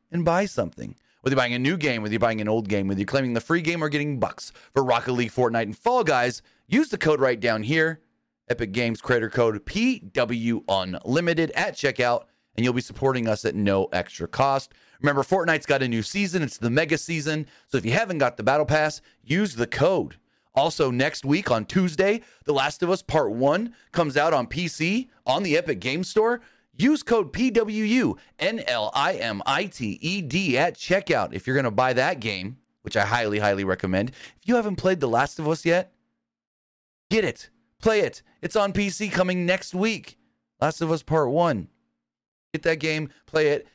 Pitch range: 110-170 Hz